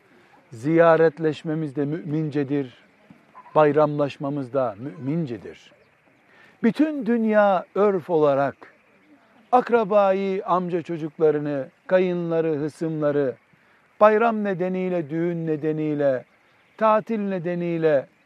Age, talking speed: 60-79, 70 wpm